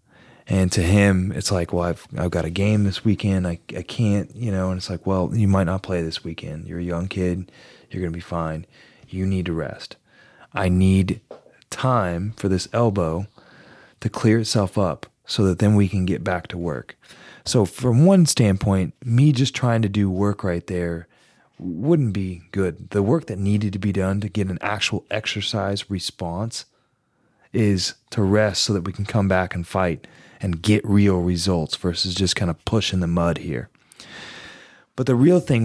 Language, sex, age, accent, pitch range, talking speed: English, male, 20-39, American, 90-110 Hz, 195 wpm